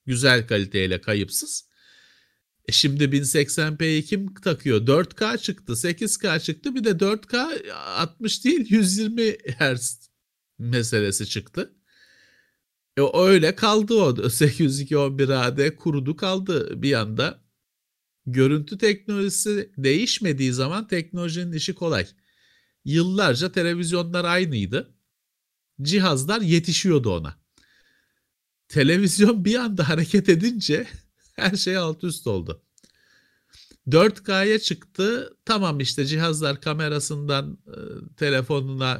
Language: Turkish